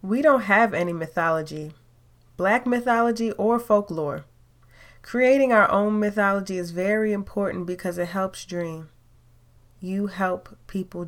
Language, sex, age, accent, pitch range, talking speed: English, female, 20-39, American, 155-205 Hz, 125 wpm